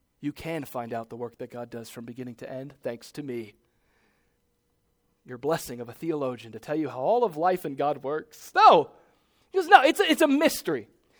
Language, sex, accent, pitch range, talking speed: English, male, American, 140-210 Hz, 210 wpm